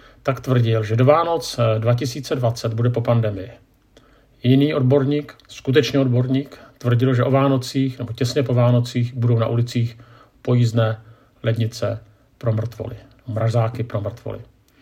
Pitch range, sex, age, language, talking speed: 115-135 Hz, male, 50-69, Czech, 125 wpm